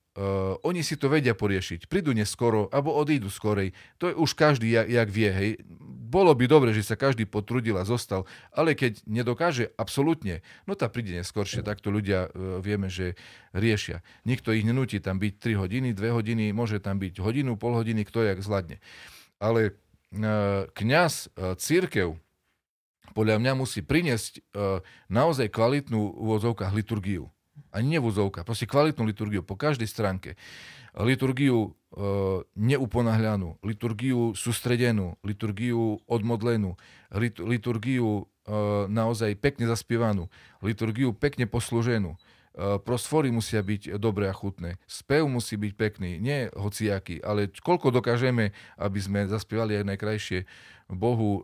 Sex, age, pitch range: male, 40-59, 100-120 Hz